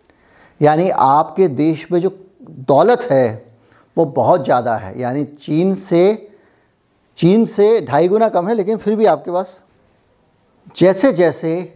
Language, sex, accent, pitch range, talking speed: Hindi, male, native, 145-175 Hz, 140 wpm